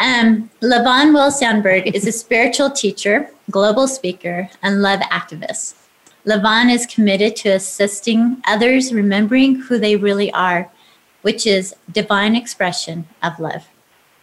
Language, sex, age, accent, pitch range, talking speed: English, female, 30-49, American, 190-230 Hz, 125 wpm